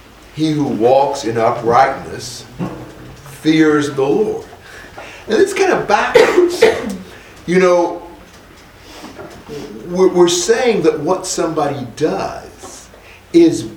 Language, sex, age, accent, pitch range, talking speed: English, male, 50-69, American, 150-225 Hz, 95 wpm